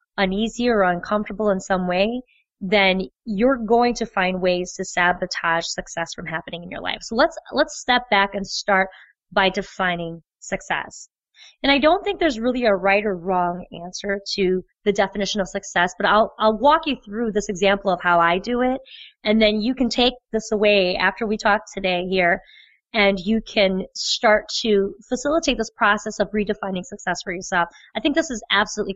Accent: American